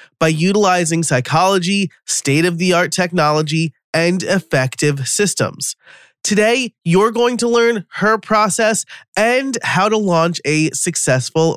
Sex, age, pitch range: male, 30-49, 140-195 Hz